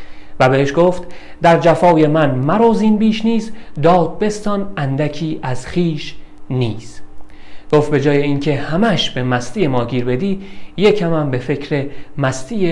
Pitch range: 135-170 Hz